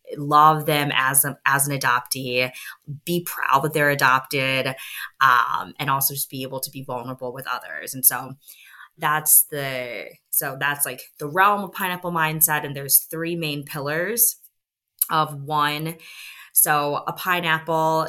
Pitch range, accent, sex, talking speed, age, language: 135-160 Hz, American, female, 150 wpm, 20-39, English